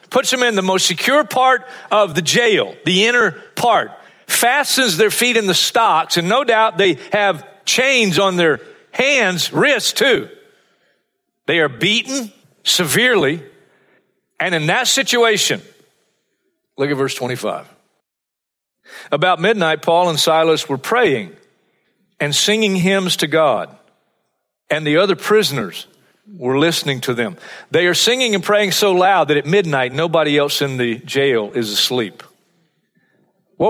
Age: 50-69